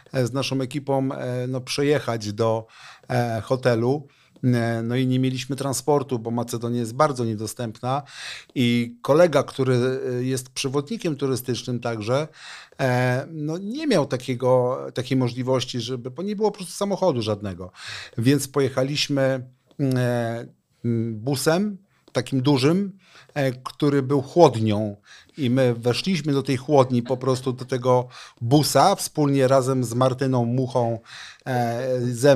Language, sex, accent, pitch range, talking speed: Polish, male, native, 125-145 Hz, 120 wpm